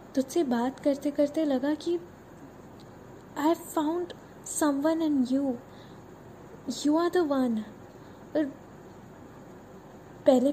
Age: 10-29